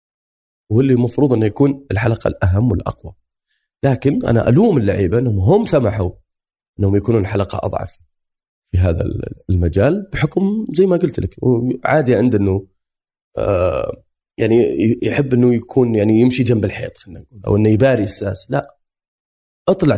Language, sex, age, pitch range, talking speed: Arabic, male, 30-49, 105-155 Hz, 140 wpm